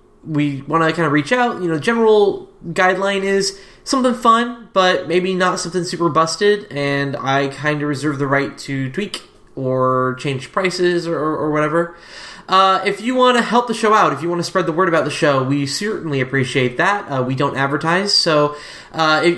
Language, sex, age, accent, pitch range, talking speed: English, male, 10-29, American, 140-190 Hz, 205 wpm